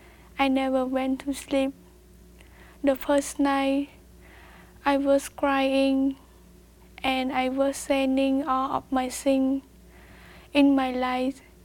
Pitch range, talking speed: 260-275 Hz, 115 wpm